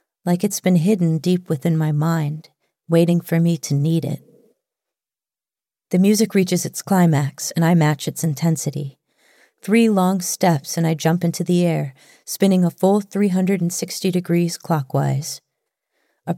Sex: female